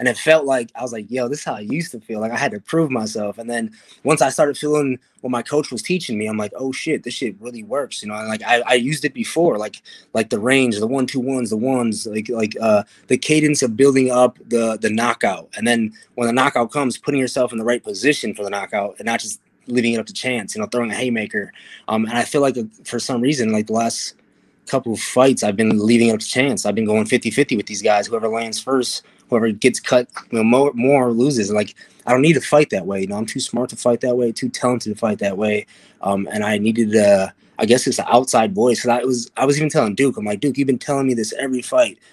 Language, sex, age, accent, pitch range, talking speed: English, male, 20-39, American, 110-135 Hz, 270 wpm